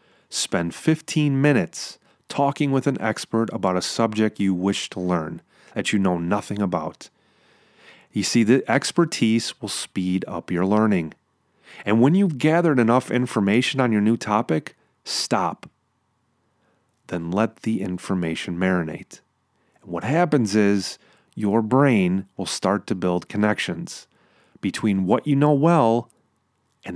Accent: American